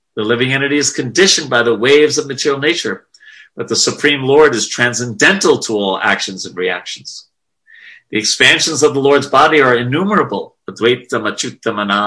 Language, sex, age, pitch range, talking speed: English, male, 50-69, 115-145 Hz, 150 wpm